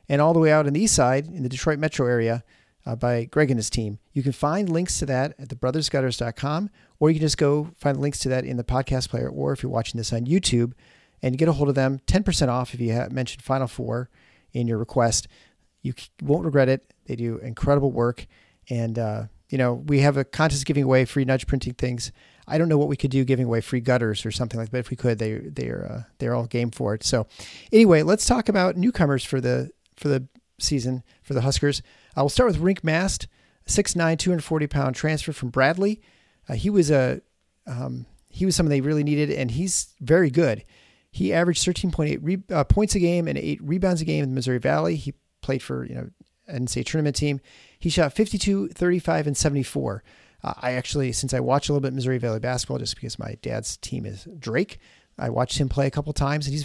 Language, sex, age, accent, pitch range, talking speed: English, male, 40-59, American, 120-155 Hz, 230 wpm